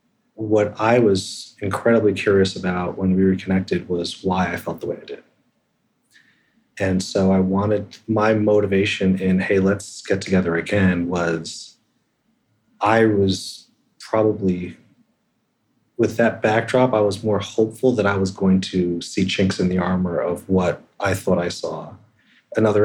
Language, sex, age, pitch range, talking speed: English, male, 30-49, 90-105 Hz, 150 wpm